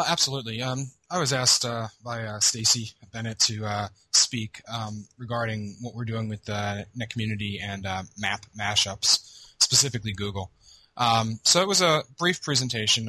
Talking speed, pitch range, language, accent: 160 wpm, 100-115 Hz, English, American